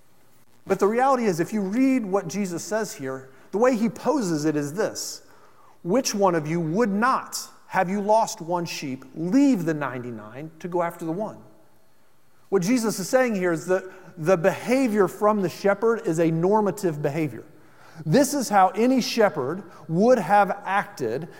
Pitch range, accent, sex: 160-215 Hz, American, male